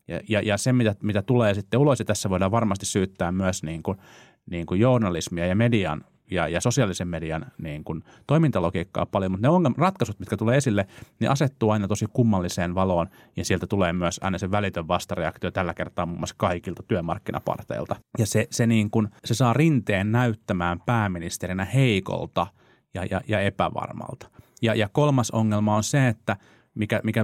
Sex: male